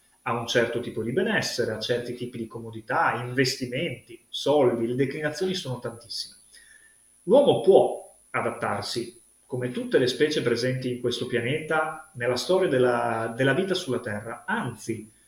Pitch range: 120-155 Hz